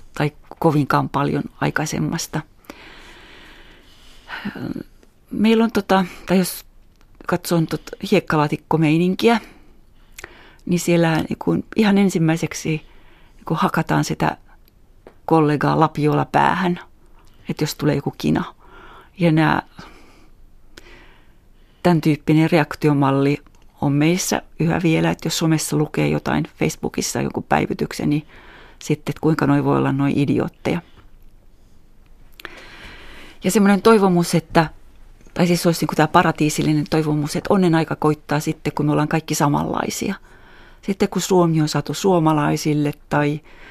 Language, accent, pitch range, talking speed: Finnish, native, 145-175 Hz, 110 wpm